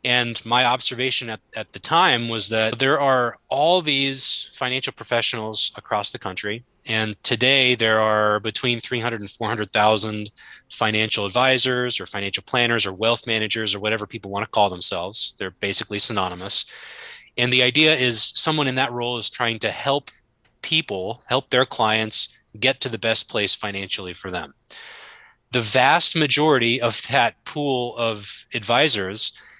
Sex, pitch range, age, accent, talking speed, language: male, 110-125 Hz, 20-39, American, 155 wpm, English